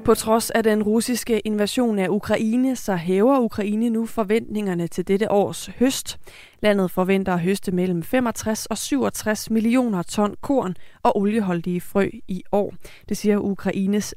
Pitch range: 185-225 Hz